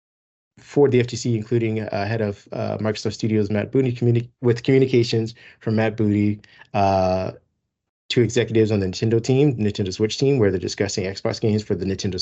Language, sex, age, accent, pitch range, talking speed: English, male, 30-49, American, 100-120 Hz, 175 wpm